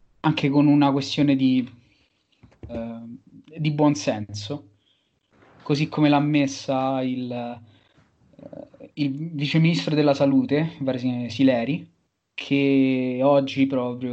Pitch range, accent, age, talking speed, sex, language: 115-145 Hz, native, 20-39, 95 wpm, male, Italian